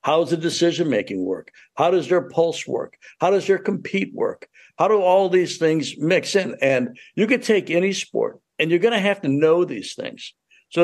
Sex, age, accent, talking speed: male, 60-79, American, 210 wpm